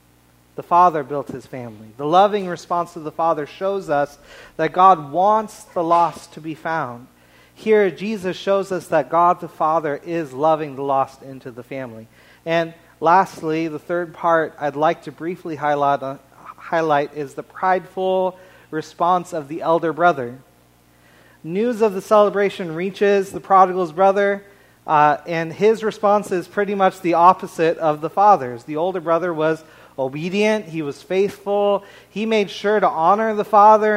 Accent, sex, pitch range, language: American, male, 150-195 Hz, English